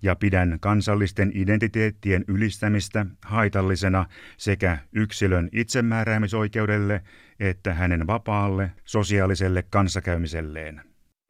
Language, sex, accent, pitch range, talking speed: Finnish, male, native, 95-110 Hz, 75 wpm